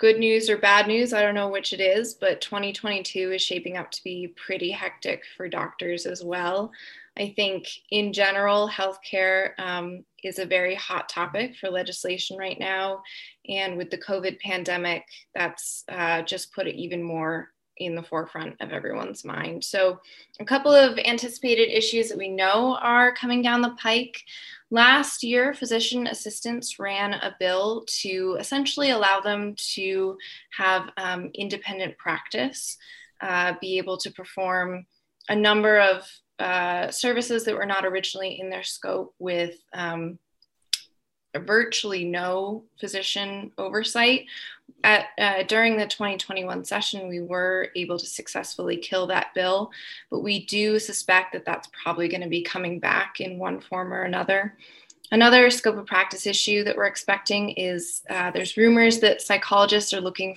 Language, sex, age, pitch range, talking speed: English, female, 20-39, 185-220 Hz, 155 wpm